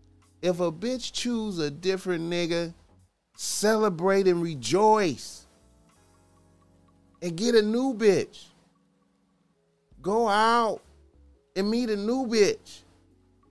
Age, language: 30-49, English